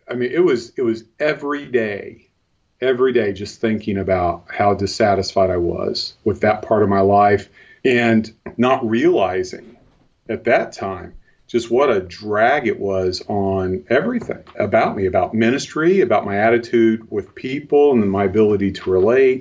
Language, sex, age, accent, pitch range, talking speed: English, male, 40-59, American, 100-140 Hz, 160 wpm